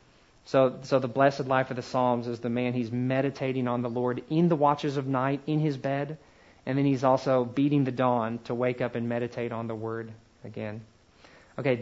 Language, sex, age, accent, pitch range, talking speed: English, male, 40-59, American, 125-160 Hz, 210 wpm